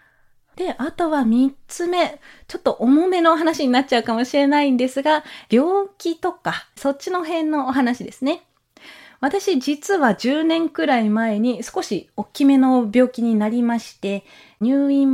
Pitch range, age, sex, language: 220-290 Hz, 20-39, female, Japanese